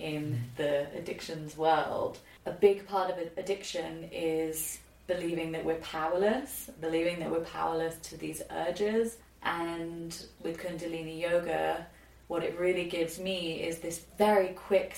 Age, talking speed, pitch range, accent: 30-49, 135 wpm, 155-180 Hz, British